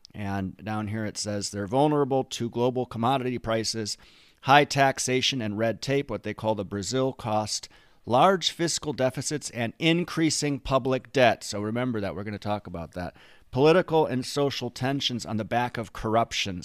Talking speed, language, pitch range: 170 wpm, English, 105-130 Hz